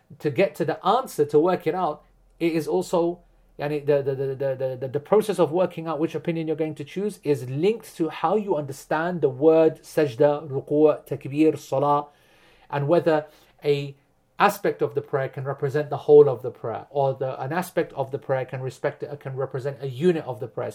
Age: 30-49